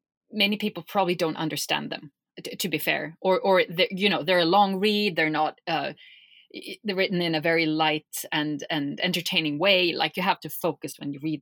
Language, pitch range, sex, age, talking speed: English, 155-195 Hz, female, 30-49, 205 wpm